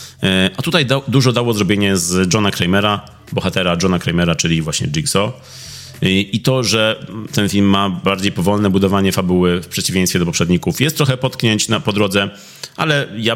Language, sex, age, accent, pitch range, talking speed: Polish, male, 30-49, native, 90-110 Hz, 170 wpm